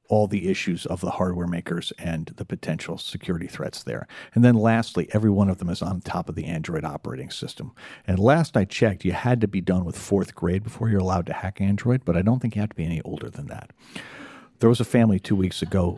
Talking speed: 245 wpm